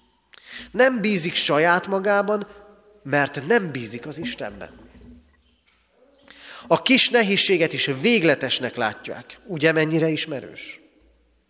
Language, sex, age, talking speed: Hungarian, male, 30-49, 95 wpm